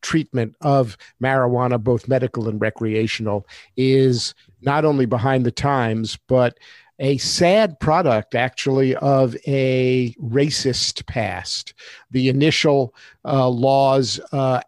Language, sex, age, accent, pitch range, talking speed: English, male, 50-69, American, 125-155 Hz, 110 wpm